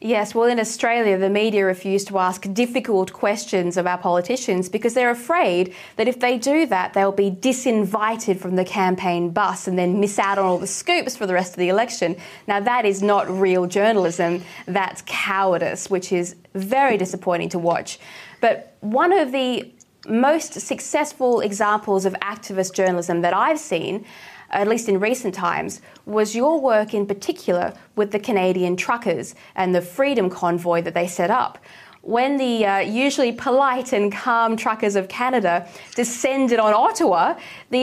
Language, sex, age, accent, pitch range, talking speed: English, female, 20-39, Australian, 185-240 Hz, 170 wpm